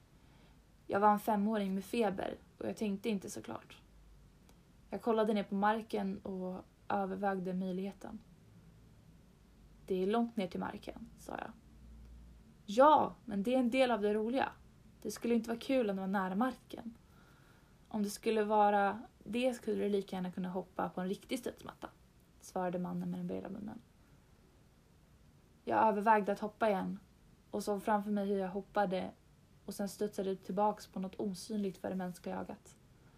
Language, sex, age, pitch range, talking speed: Swedish, female, 20-39, 190-220 Hz, 165 wpm